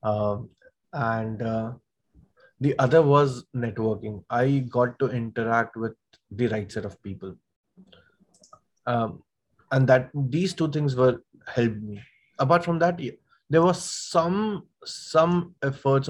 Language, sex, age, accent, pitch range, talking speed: English, male, 20-39, Indian, 120-155 Hz, 130 wpm